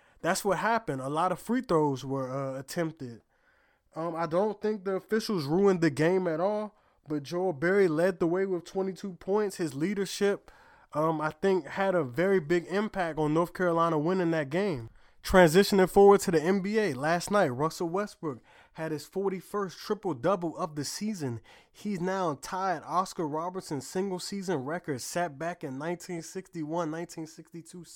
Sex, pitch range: male, 155-190 Hz